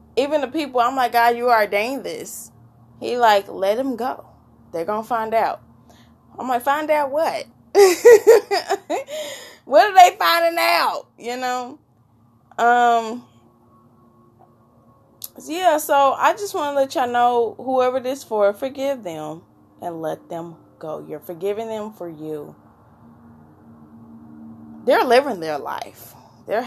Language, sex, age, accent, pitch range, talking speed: English, female, 20-39, American, 155-255 Hz, 135 wpm